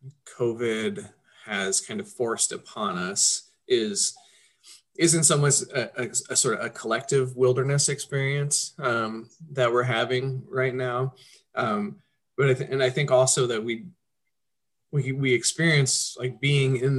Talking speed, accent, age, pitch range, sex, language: 140 wpm, American, 30-49, 125-195 Hz, male, English